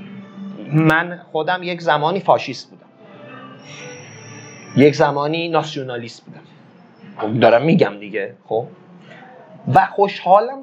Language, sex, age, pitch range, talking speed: Persian, male, 30-49, 160-210 Hz, 90 wpm